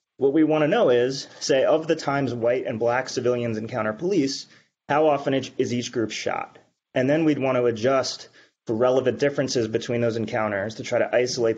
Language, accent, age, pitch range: English, American, 30-49, 115-135 Hz